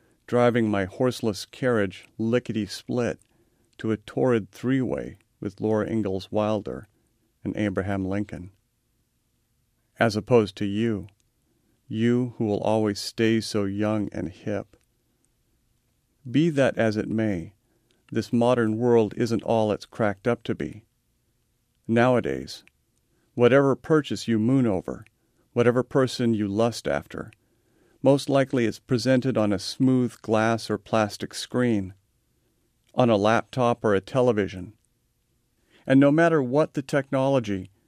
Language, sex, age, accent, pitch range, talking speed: English, male, 40-59, American, 105-130 Hz, 125 wpm